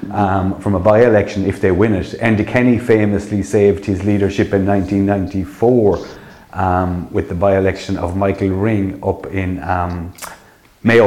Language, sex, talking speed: English, male, 145 wpm